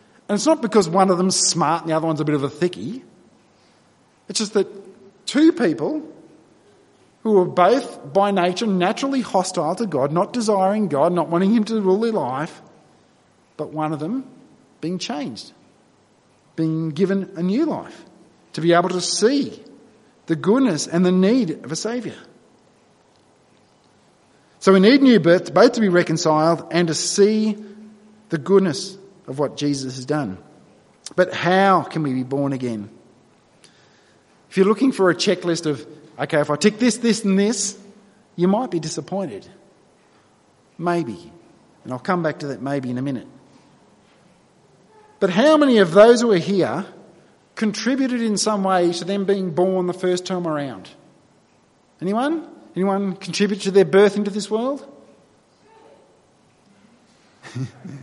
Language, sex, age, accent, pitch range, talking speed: English, male, 50-69, Australian, 165-215 Hz, 155 wpm